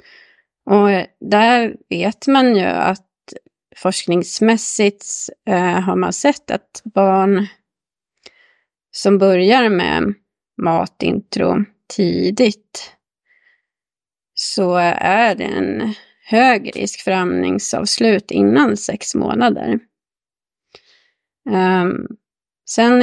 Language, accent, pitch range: Swedish, native, 190-235 Hz